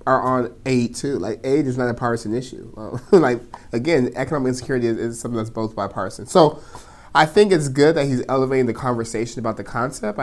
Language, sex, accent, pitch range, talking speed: English, male, American, 110-125 Hz, 200 wpm